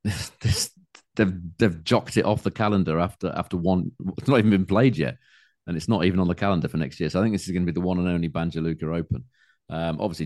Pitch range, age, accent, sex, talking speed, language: 70-90 Hz, 40-59, British, male, 265 wpm, English